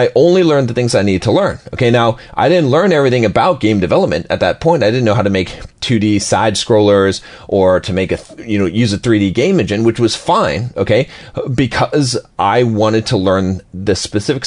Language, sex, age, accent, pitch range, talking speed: English, male, 30-49, American, 100-125 Hz, 225 wpm